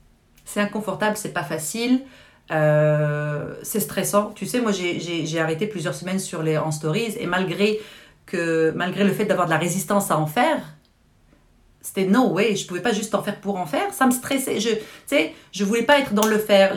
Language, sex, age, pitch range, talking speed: French, female, 40-59, 180-215 Hz, 210 wpm